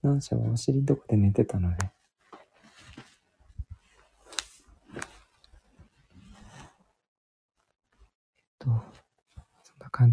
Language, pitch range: Japanese, 105-135 Hz